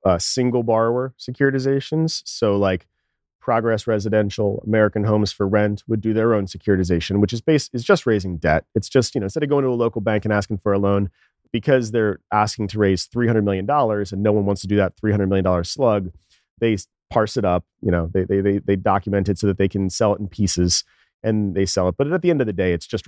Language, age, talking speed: English, 30-49, 235 wpm